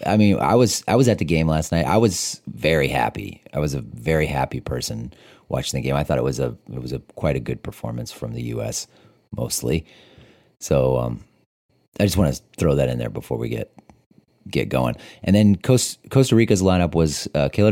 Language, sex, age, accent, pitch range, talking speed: English, male, 30-49, American, 65-90 Hz, 215 wpm